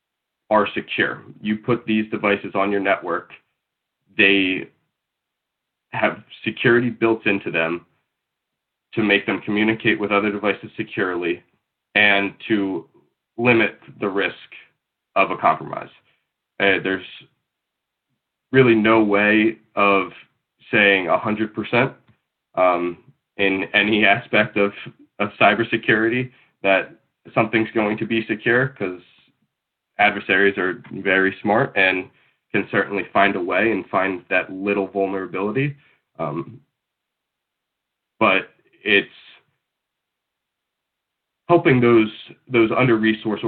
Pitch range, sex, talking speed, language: 95-115 Hz, male, 105 wpm, English